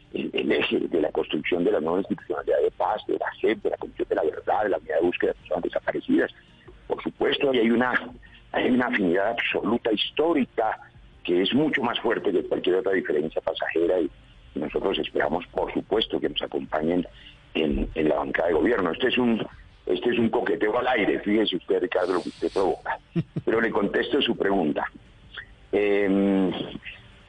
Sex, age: male, 50-69